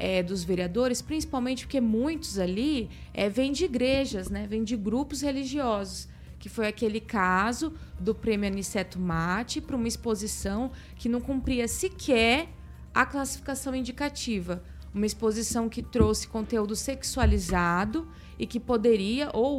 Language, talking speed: Portuguese, 130 wpm